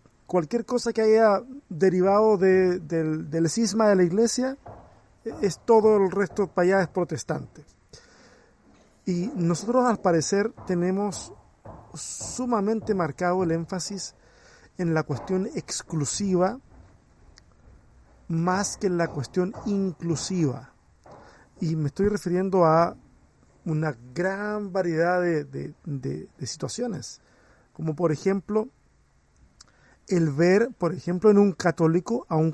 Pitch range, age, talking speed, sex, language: 160-205 Hz, 50-69, 115 wpm, male, Spanish